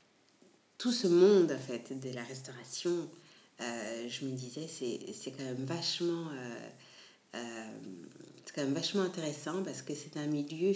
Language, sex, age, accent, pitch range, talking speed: French, female, 50-69, French, 135-175 Hz, 160 wpm